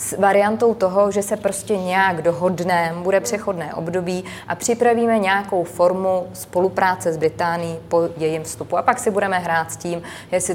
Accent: native